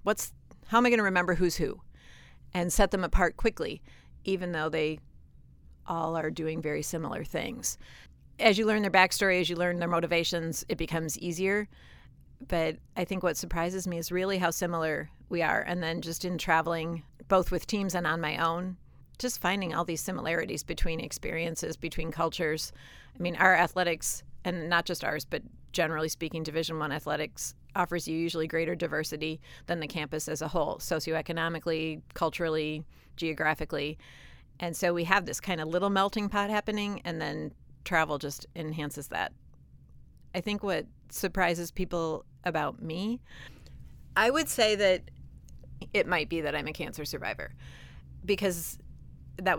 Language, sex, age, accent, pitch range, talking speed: English, female, 40-59, American, 155-180 Hz, 165 wpm